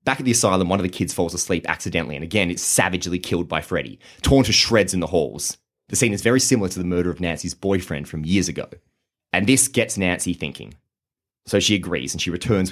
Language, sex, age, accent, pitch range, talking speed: English, male, 30-49, Australian, 90-120 Hz, 230 wpm